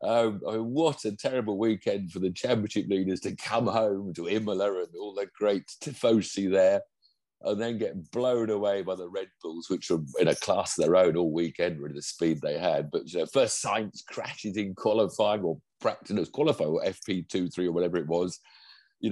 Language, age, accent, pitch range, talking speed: English, 50-69, British, 95-135 Hz, 210 wpm